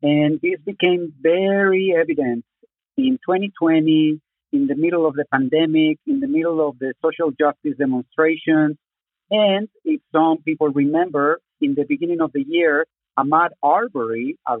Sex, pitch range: male, 145-180 Hz